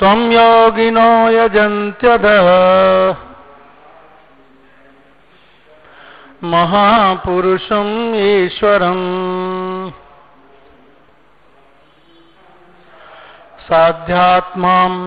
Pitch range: 185-215 Hz